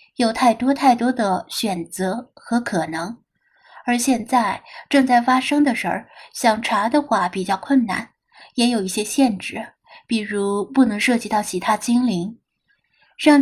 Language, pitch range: Chinese, 200-275 Hz